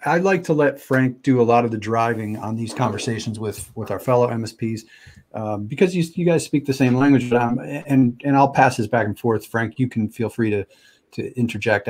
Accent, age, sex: American, 40-59, male